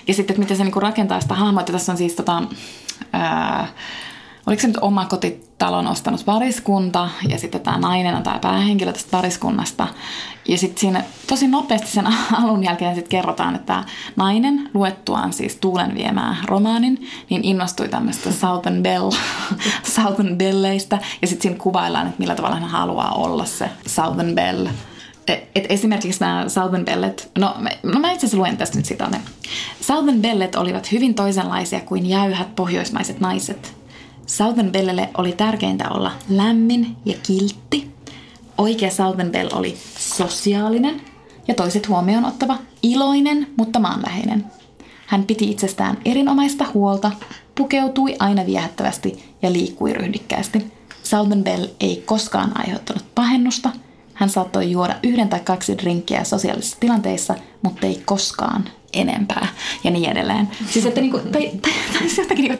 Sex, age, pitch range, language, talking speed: female, 20-39, 185-235 Hz, Finnish, 135 wpm